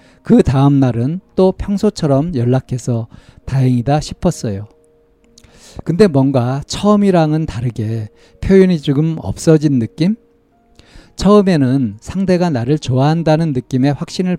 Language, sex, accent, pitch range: Korean, male, native, 125-170 Hz